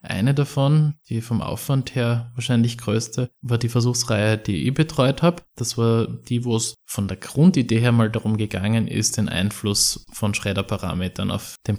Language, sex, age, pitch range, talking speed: German, male, 20-39, 105-130 Hz, 175 wpm